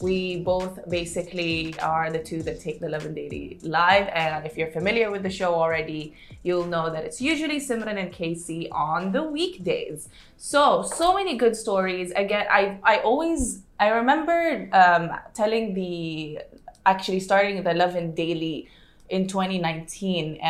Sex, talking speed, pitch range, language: female, 160 wpm, 160-190 Hz, Arabic